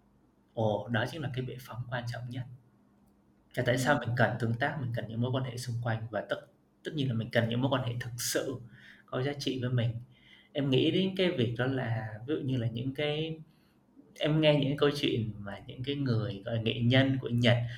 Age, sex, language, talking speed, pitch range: 20-39, male, Vietnamese, 235 wpm, 115-140 Hz